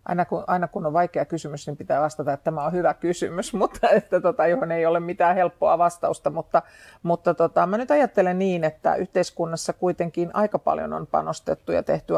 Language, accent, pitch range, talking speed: Finnish, native, 160-180 Hz, 195 wpm